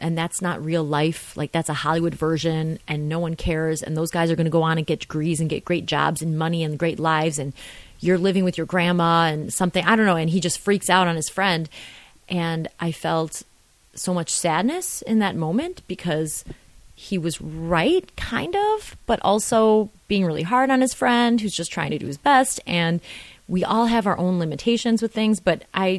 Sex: female